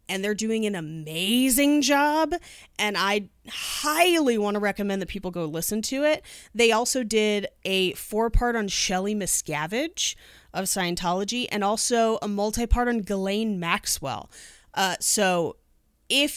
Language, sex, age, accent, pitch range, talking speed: English, female, 30-49, American, 185-230 Hz, 145 wpm